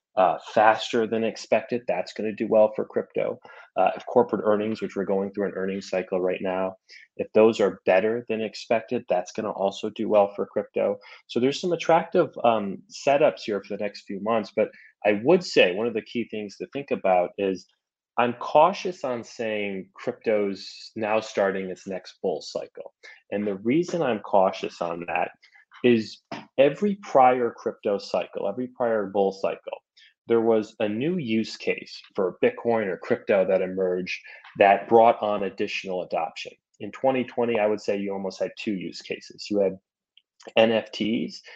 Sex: male